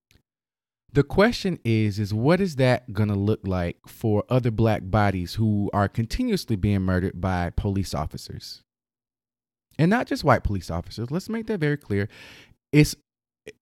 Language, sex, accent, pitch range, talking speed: English, male, American, 105-130 Hz, 150 wpm